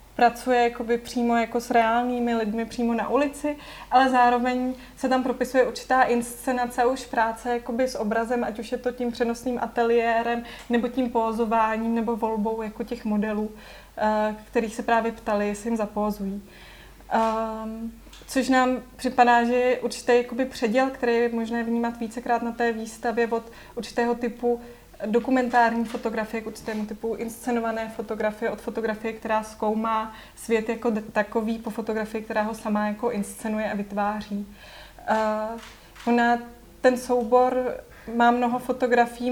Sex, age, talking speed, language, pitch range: female, 20-39, 140 wpm, Czech, 225-245 Hz